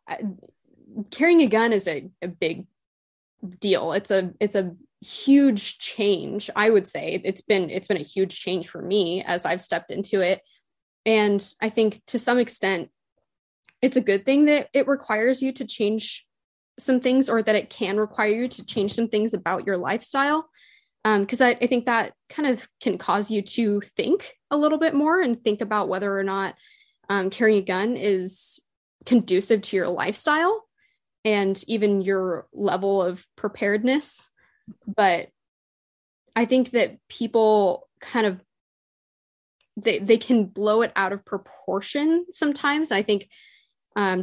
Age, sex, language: 20-39, female, English